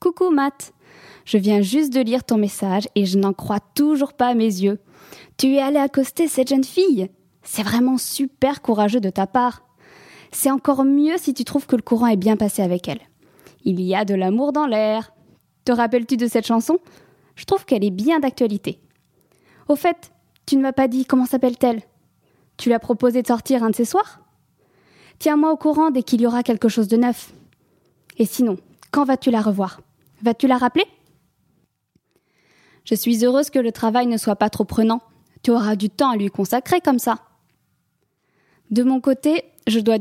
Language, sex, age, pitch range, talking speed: English, female, 20-39, 210-270 Hz, 190 wpm